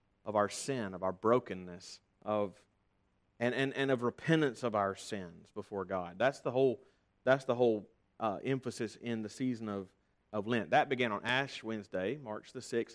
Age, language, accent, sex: 40-59, English, American, male